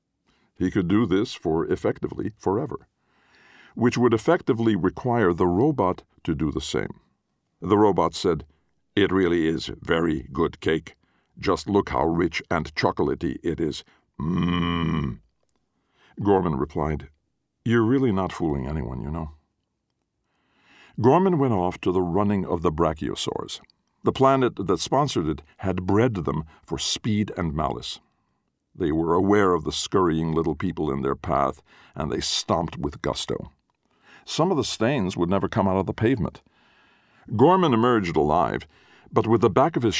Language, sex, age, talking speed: English, male, 60-79, 150 wpm